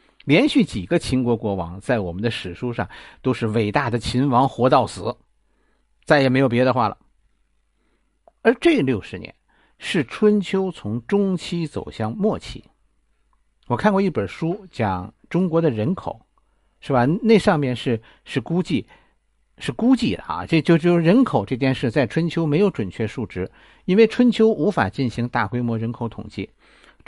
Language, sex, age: Chinese, male, 50-69